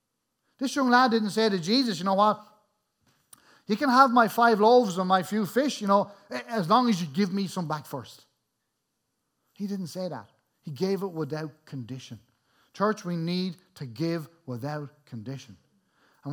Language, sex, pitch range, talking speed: English, male, 130-185 Hz, 175 wpm